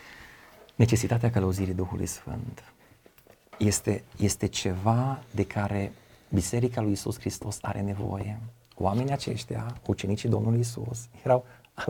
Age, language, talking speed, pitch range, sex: 40-59, Romanian, 110 wpm, 100-120 Hz, male